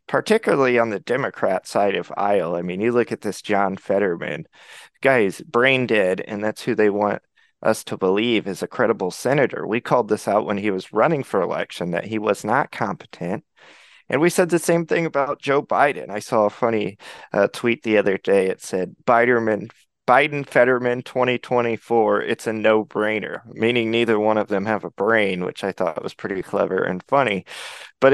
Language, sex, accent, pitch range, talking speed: English, male, American, 100-120 Hz, 190 wpm